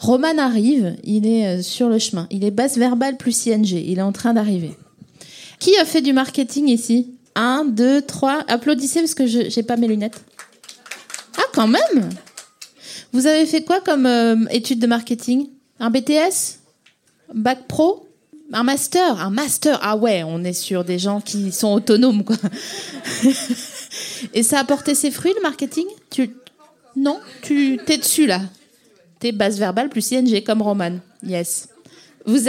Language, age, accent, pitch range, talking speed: French, 20-39, French, 205-270 Hz, 165 wpm